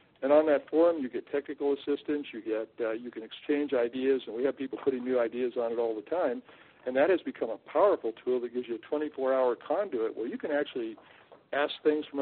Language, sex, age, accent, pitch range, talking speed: English, male, 60-79, American, 125-150 Hz, 230 wpm